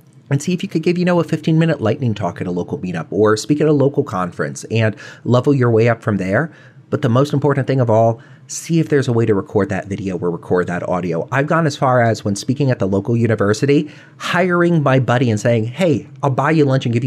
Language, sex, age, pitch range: English, male, 30-49, 105-145 Hz